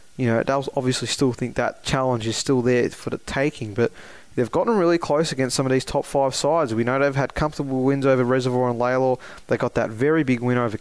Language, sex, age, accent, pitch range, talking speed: English, male, 20-39, Australian, 120-135 Hz, 245 wpm